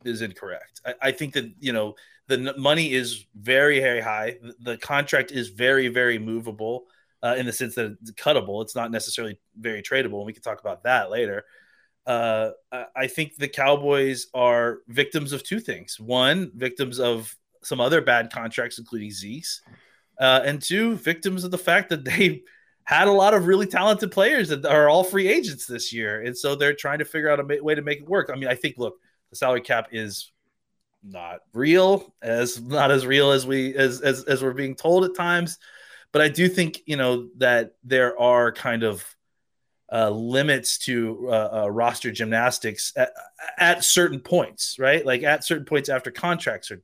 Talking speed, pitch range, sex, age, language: 195 wpm, 120-165 Hz, male, 30-49, English